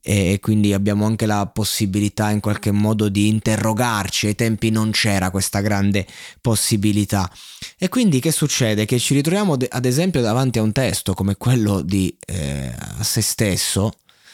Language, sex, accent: Italian, male, native